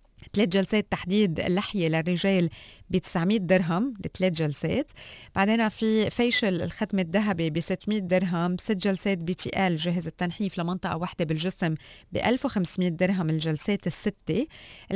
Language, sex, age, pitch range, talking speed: Arabic, female, 20-39, 170-205 Hz, 130 wpm